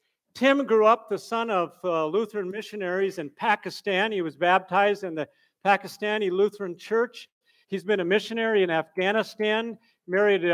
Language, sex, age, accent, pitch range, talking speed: English, male, 50-69, American, 175-220 Hz, 150 wpm